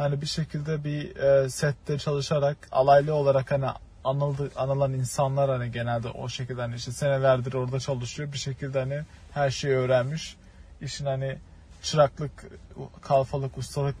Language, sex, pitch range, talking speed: Turkish, male, 130-155 Hz, 135 wpm